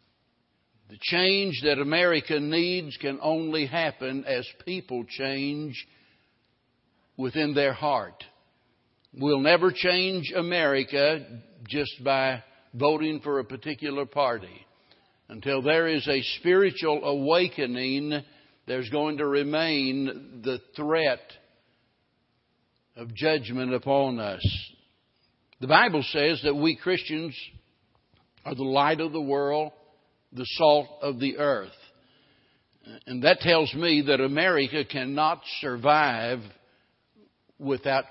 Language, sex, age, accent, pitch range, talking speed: English, male, 60-79, American, 135-160 Hz, 105 wpm